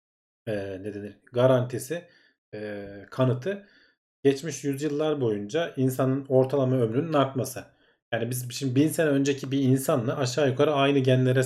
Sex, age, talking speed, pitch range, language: male, 40-59, 125 wpm, 110-140 Hz, Turkish